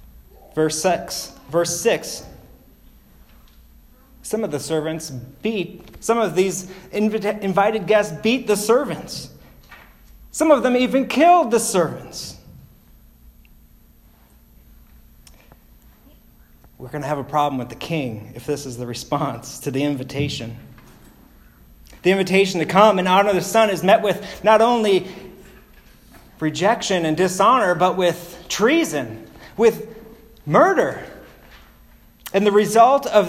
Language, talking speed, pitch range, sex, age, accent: English, 120 wpm, 130-210 Hz, male, 30-49, American